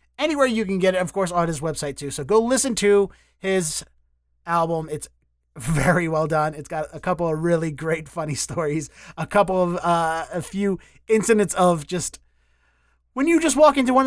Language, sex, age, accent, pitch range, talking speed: English, male, 30-49, American, 150-200 Hz, 190 wpm